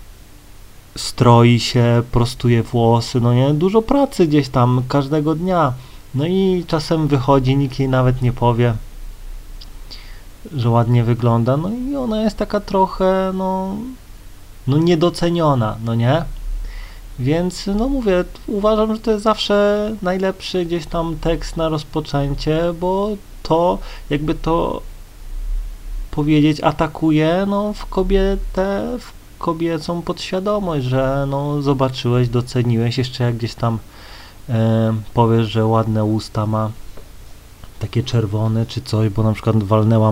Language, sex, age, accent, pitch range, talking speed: Polish, male, 30-49, native, 110-165 Hz, 120 wpm